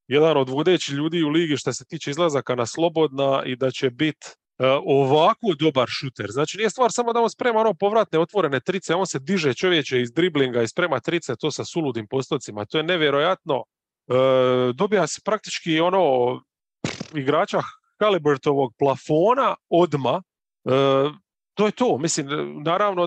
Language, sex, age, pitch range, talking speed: English, male, 30-49, 135-180 Hz, 165 wpm